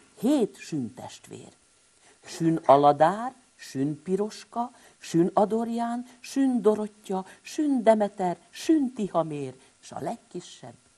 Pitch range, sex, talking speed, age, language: 150-235 Hz, female, 100 wpm, 50-69, Hungarian